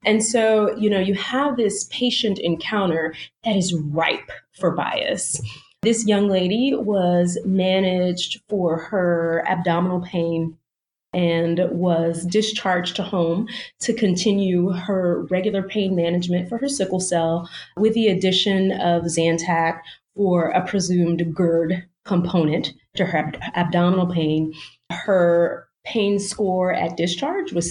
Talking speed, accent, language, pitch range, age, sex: 125 wpm, American, English, 170-205 Hz, 30-49, female